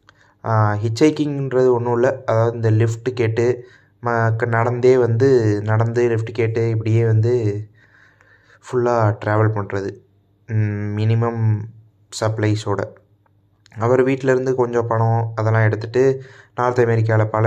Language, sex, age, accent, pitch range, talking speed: Tamil, male, 20-39, native, 105-125 Hz, 95 wpm